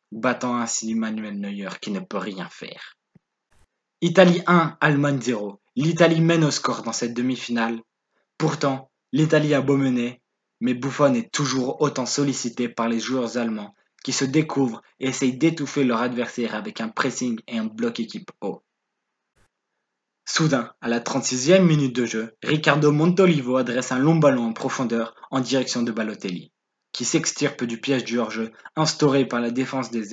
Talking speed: 160 wpm